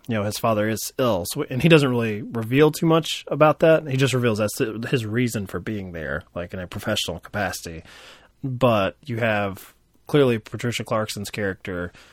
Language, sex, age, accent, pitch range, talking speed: English, male, 20-39, American, 100-130 Hz, 180 wpm